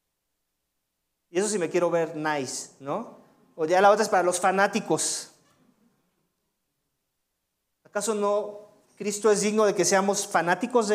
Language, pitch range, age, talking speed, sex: English, 200-270 Hz, 40-59, 140 wpm, male